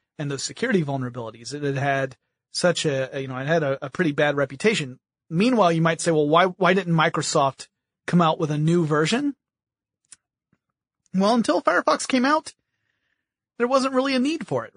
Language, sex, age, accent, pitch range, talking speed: English, male, 30-49, American, 140-190 Hz, 180 wpm